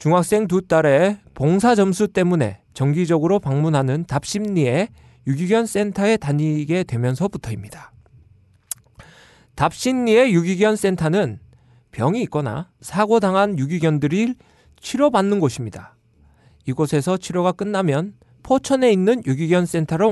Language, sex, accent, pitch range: Korean, male, native, 130-200 Hz